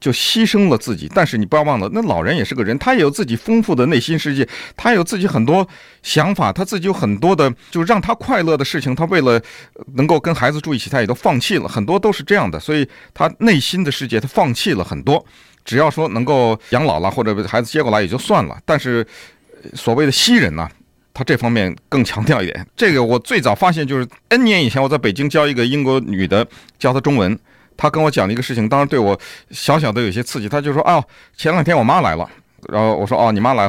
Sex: male